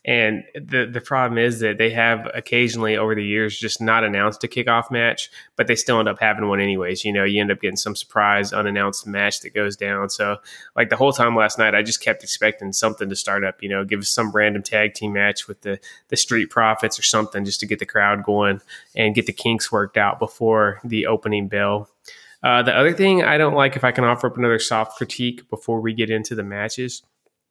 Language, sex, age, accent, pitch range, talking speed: English, male, 20-39, American, 105-120 Hz, 235 wpm